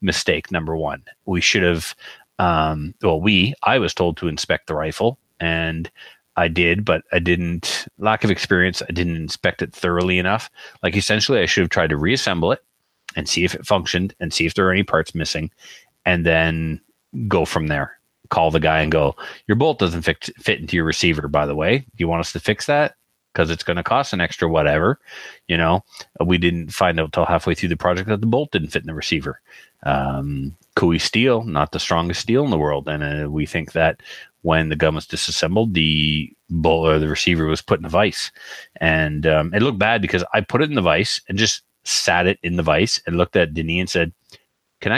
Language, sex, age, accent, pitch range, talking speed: English, male, 30-49, American, 80-95 Hz, 215 wpm